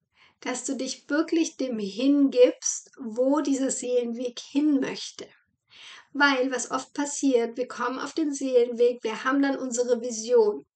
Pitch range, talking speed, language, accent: 245-285 Hz, 140 wpm, German, German